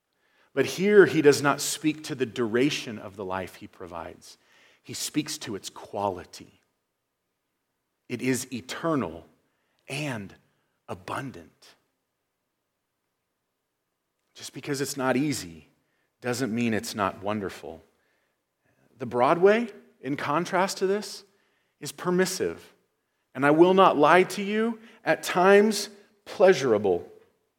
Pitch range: 125-185 Hz